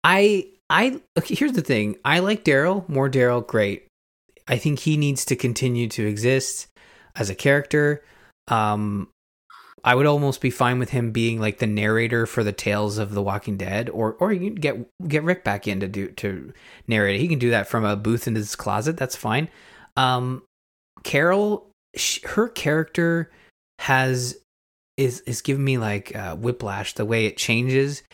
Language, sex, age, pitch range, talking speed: English, male, 20-39, 105-140 Hz, 175 wpm